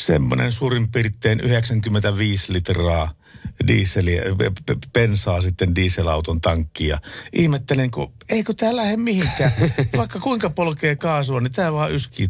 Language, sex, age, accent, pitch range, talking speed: Finnish, male, 50-69, native, 90-130 Hz, 110 wpm